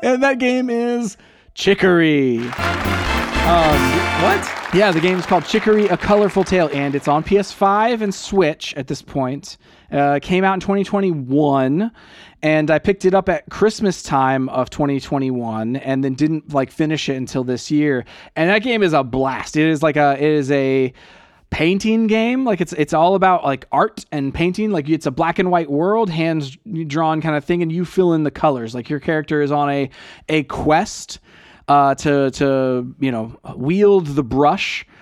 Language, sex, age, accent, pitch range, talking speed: English, male, 20-39, American, 135-185 Hz, 185 wpm